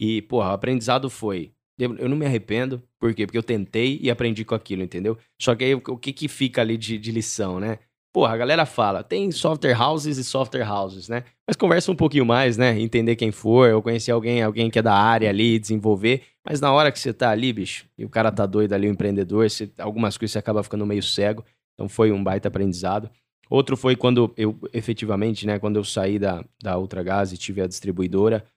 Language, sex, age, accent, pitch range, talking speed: Portuguese, male, 20-39, Brazilian, 100-120 Hz, 225 wpm